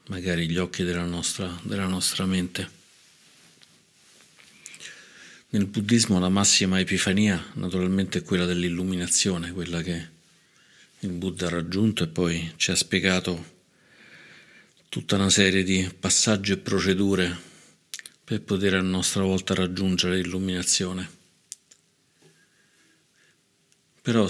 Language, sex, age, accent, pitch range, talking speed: Italian, male, 50-69, native, 90-95 Hz, 105 wpm